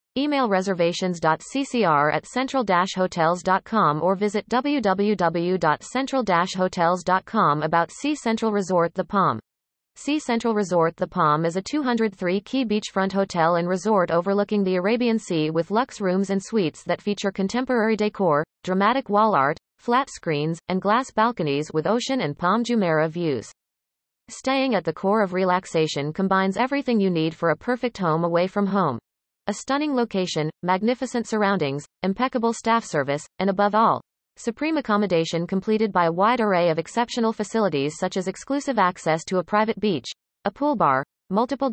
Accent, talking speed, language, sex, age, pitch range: American, 150 wpm, English, female, 30-49, 170-225 Hz